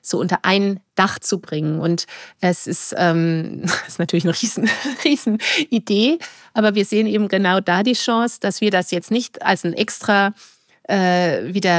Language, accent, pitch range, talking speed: German, German, 175-220 Hz, 175 wpm